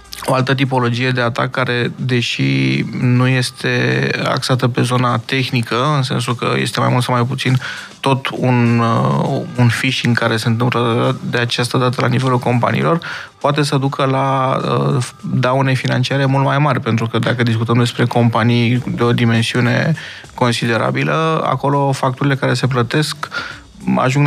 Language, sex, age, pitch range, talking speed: Romanian, male, 20-39, 120-140 Hz, 155 wpm